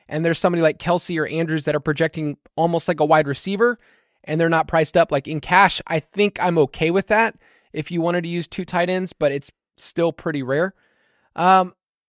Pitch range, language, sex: 150-185 Hz, English, male